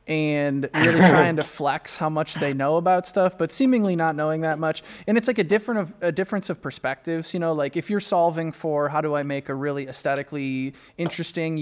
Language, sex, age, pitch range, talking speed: English, male, 20-39, 145-175 Hz, 215 wpm